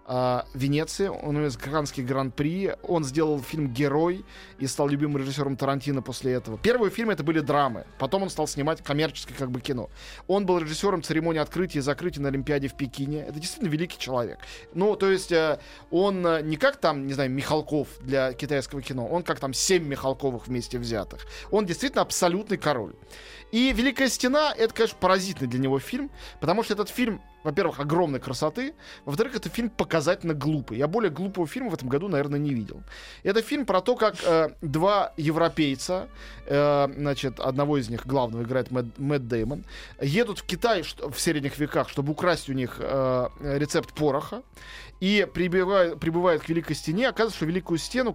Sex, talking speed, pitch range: male, 180 wpm, 135-185 Hz